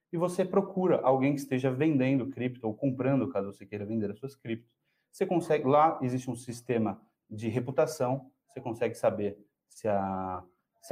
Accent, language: Brazilian, Portuguese